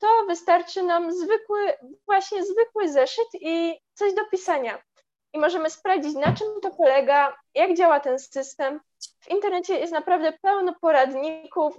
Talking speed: 145 wpm